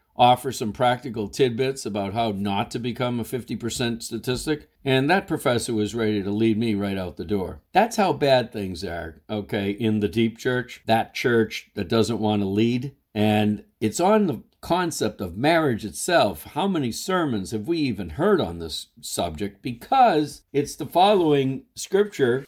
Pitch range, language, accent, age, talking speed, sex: 110-145 Hz, English, American, 50-69, 170 wpm, male